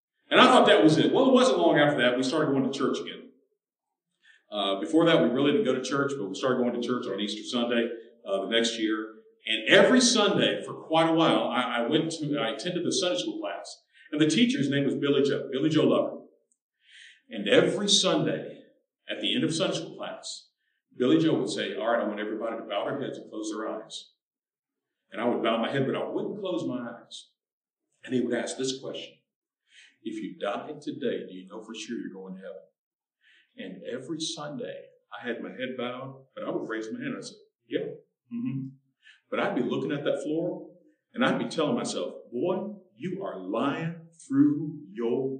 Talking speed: 215 wpm